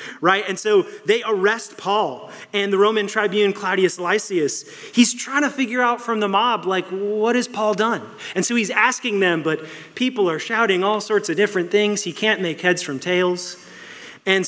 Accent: American